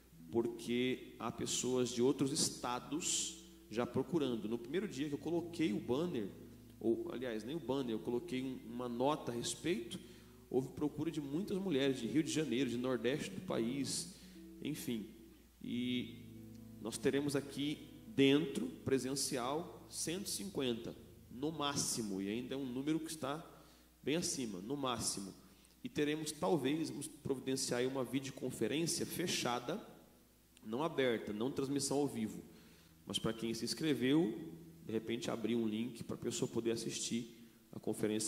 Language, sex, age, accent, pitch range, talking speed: Portuguese, male, 40-59, Brazilian, 115-150 Hz, 145 wpm